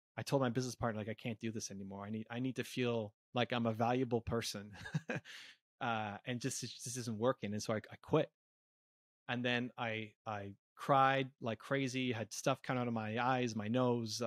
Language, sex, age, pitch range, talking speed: English, male, 30-49, 115-140 Hz, 205 wpm